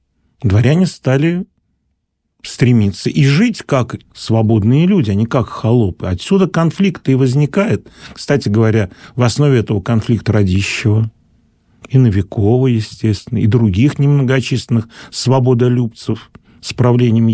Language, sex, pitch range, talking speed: Russian, male, 110-140 Hz, 110 wpm